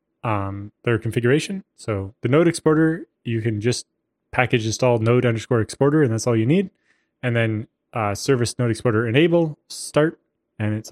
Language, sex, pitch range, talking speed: English, male, 105-135 Hz, 165 wpm